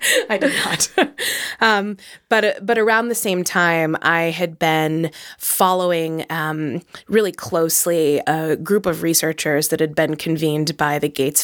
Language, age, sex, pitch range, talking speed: English, 20-39, female, 155-185 Hz, 145 wpm